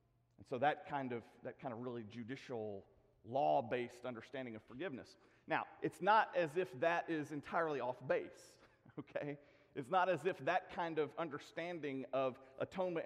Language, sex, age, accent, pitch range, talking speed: English, male, 40-59, American, 125-175 Hz, 160 wpm